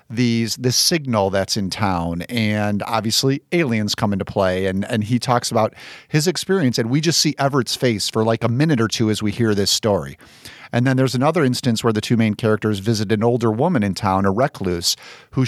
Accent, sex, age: American, male, 40-59